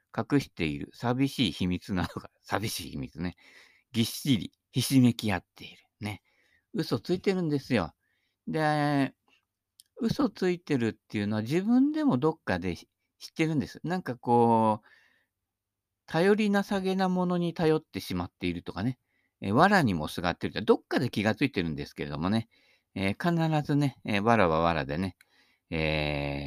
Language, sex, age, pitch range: Japanese, male, 50-69, 95-155 Hz